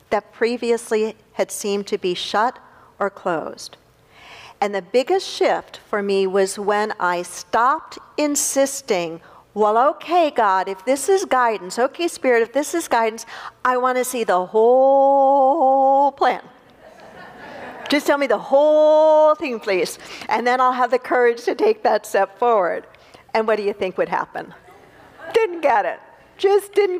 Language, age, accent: English, 50-69, American